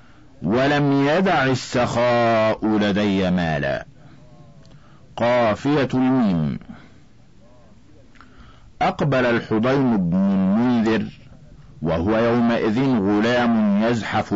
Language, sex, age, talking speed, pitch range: Arabic, male, 50-69, 65 wpm, 120-145 Hz